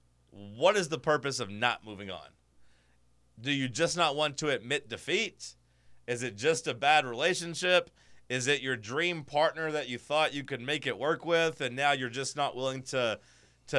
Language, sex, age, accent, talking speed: English, male, 30-49, American, 190 wpm